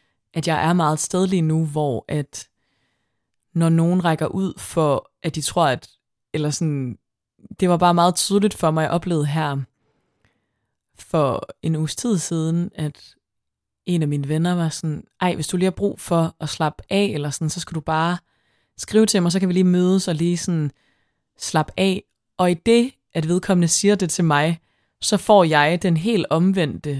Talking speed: 185 wpm